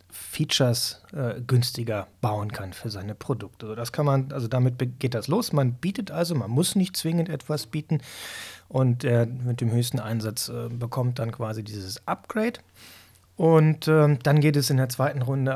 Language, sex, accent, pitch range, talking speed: German, male, German, 110-145 Hz, 175 wpm